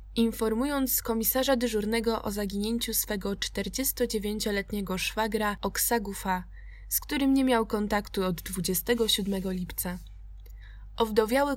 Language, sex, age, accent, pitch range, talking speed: Polish, female, 20-39, native, 185-230 Hz, 95 wpm